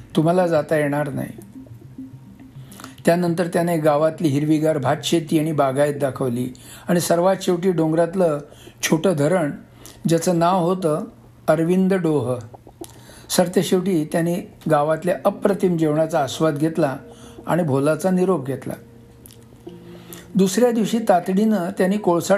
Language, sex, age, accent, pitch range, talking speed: Marathi, male, 60-79, native, 130-185 Hz, 105 wpm